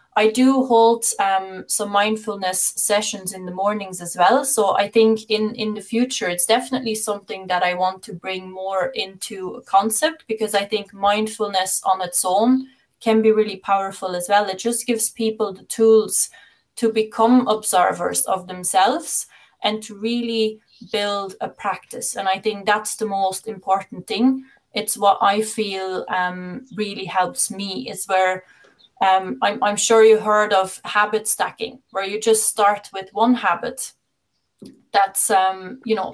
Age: 20-39